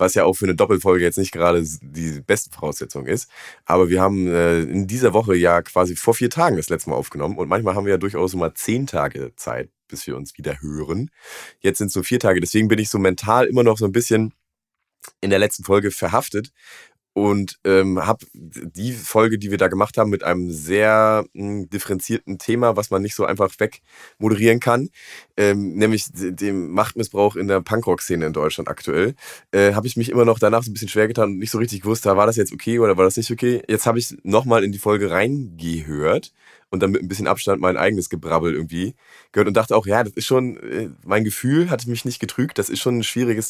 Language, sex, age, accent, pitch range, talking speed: German, male, 30-49, German, 90-110 Hz, 220 wpm